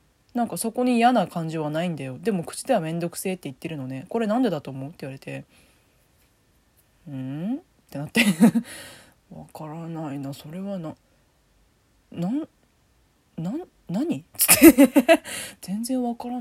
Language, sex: Japanese, female